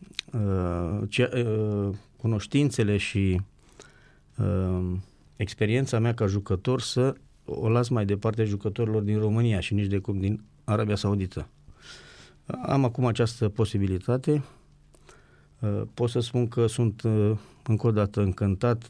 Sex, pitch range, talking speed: male, 100-115 Hz, 110 wpm